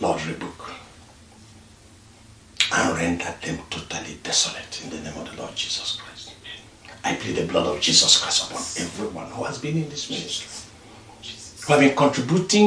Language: English